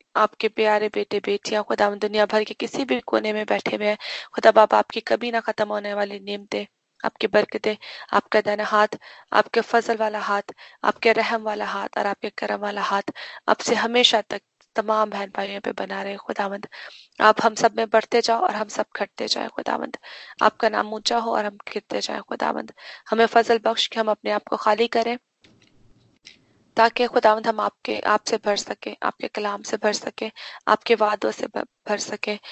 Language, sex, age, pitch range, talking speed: Hindi, female, 20-39, 205-225 Hz, 175 wpm